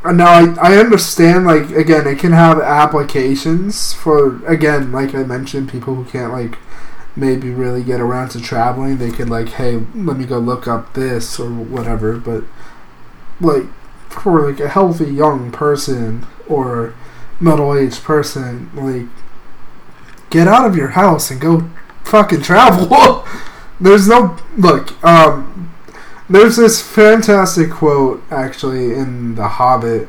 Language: English